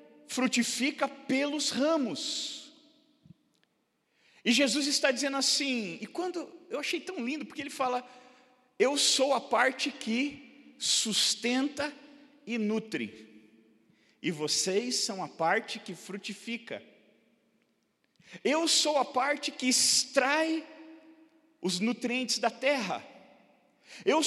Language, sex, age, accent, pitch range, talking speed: Portuguese, male, 50-69, Brazilian, 225-300 Hz, 105 wpm